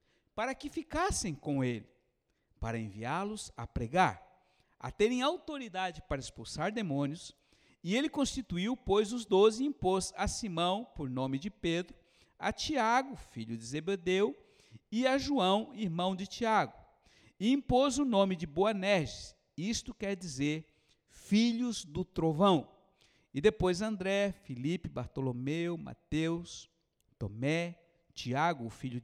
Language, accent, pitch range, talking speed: Portuguese, Brazilian, 145-195 Hz, 125 wpm